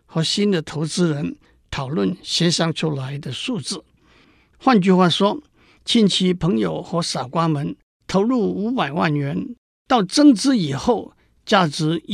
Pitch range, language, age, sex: 155-210 Hz, Chinese, 60-79, male